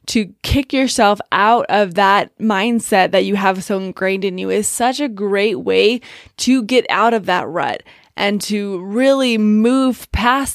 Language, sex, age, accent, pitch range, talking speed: English, female, 20-39, American, 195-240 Hz, 170 wpm